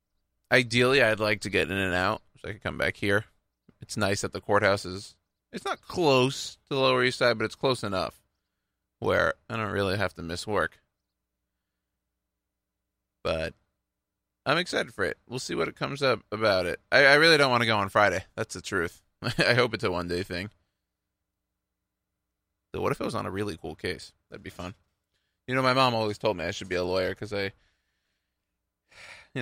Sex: male